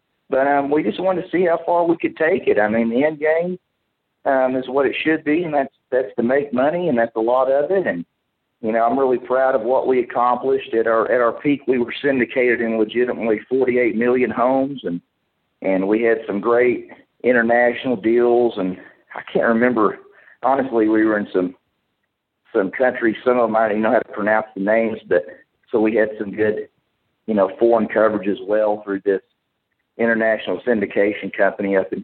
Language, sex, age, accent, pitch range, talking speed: English, male, 50-69, American, 110-140 Hz, 205 wpm